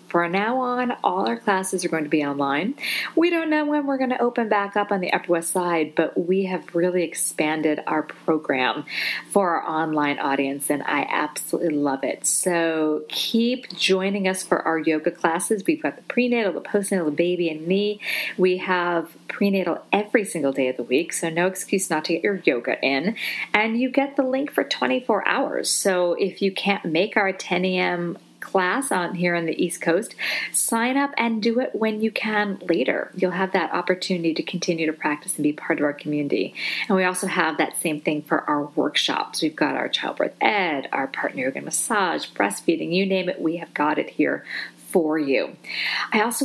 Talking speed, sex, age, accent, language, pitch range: 200 wpm, female, 40-59, American, English, 160-210 Hz